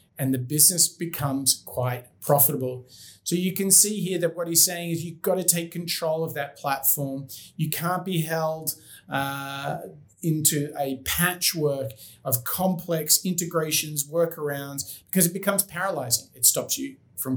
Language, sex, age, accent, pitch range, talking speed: English, male, 40-59, Australian, 140-180 Hz, 150 wpm